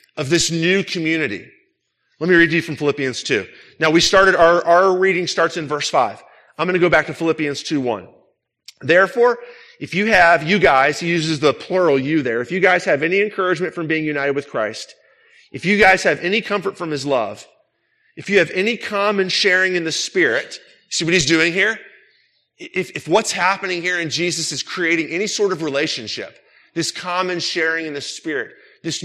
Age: 40-59